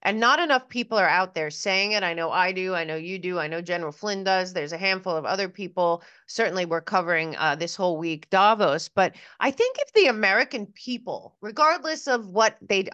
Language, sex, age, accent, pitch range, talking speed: English, female, 30-49, American, 175-230 Hz, 220 wpm